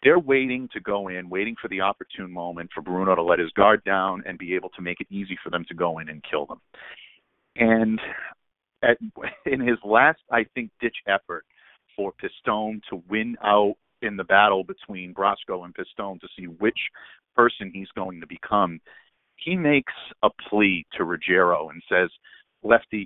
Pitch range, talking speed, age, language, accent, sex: 90-115 Hz, 180 wpm, 50-69, English, American, male